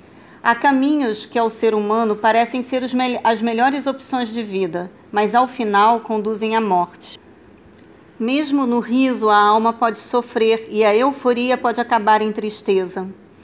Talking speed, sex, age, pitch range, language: 145 wpm, female, 40-59, 210-235 Hz, Portuguese